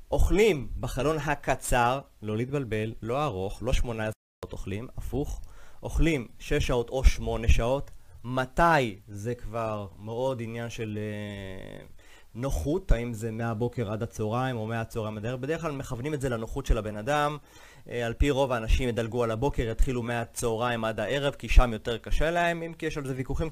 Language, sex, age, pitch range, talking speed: Hebrew, male, 30-49, 110-135 Hz, 175 wpm